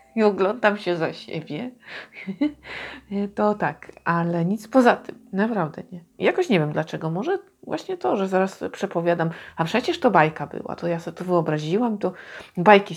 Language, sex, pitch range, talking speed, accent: Polish, female, 165-210 Hz, 160 wpm, native